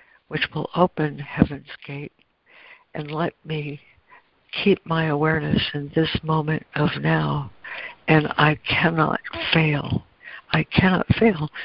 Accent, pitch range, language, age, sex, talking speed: American, 145-170 Hz, English, 60-79, female, 120 wpm